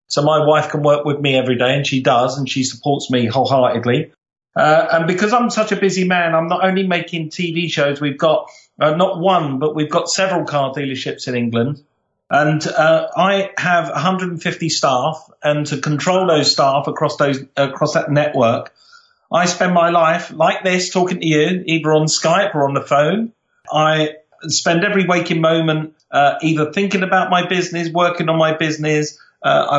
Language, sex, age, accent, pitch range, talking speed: English, male, 40-59, British, 140-175 Hz, 185 wpm